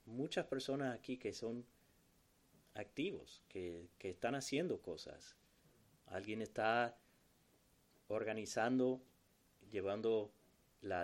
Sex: male